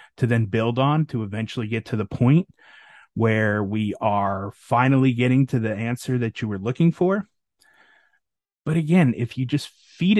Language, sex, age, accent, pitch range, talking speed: English, male, 30-49, American, 110-145 Hz, 170 wpm